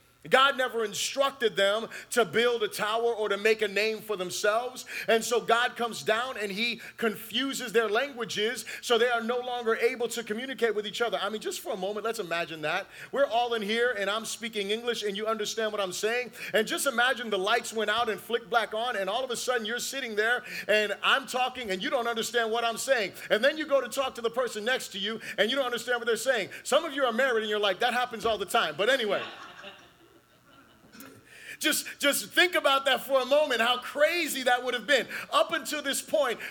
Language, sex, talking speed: English, male, 230 wpm